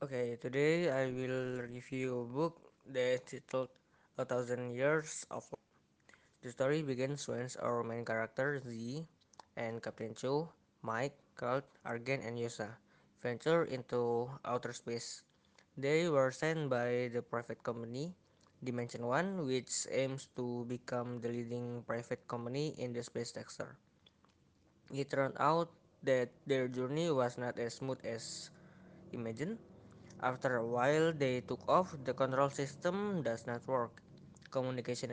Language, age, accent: Indonesian, 20-39, native